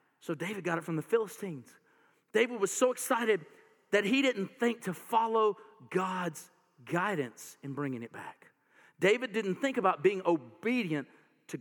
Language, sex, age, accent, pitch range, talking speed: English, male, 40-59, American, 170-225 Hz, 155 wpm